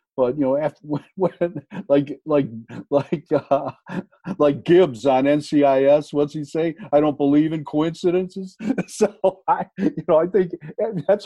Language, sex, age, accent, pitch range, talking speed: English, male, 50-69, American, 125-160 Hz, 155 wpm